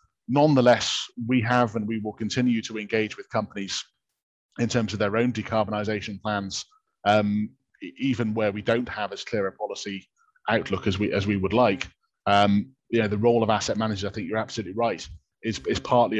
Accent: British